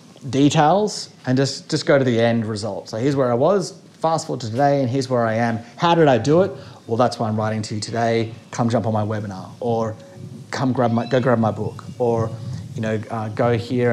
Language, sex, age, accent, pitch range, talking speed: English, male, 30-49, Australian, 115-140 Hz, 235 wpm